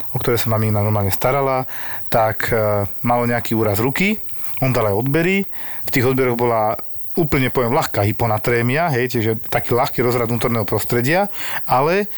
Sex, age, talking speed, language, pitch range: male, 40-59, 155 wpm, Slovak, 110-135 Hz